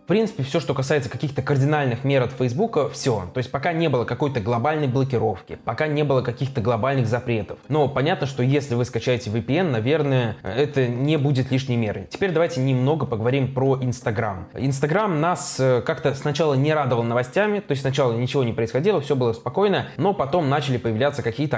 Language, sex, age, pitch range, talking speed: Russian, male, 20-39, 120-150 Hz, 180 wpm